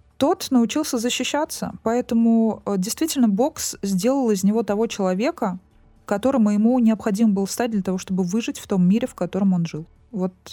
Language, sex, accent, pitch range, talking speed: Russian, female, native, 180-230 Hz, 165 wpm